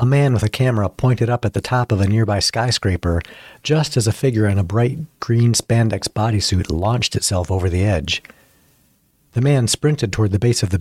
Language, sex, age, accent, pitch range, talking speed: English, male, 50-69, American, 95-120 Hz, 205 wpm